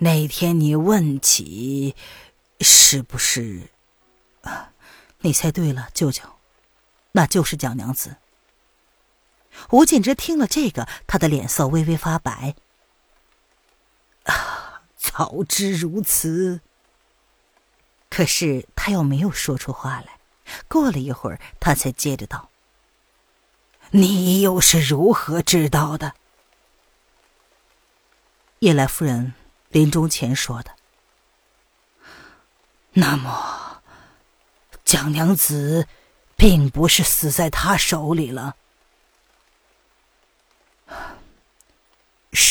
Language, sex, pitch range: Chinese, female, 135-175 Hz